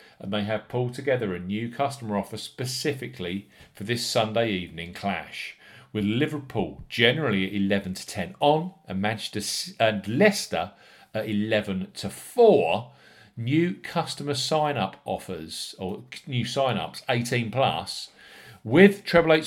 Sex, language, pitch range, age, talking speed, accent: male, English, 100-145 Hz, 40-59, 135 wpm, British